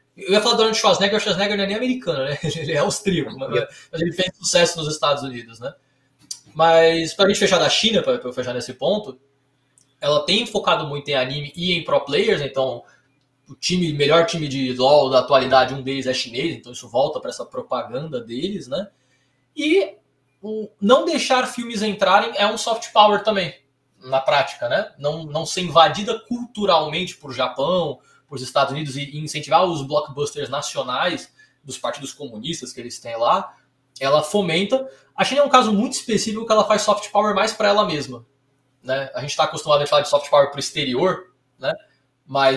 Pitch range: 135-205 Hz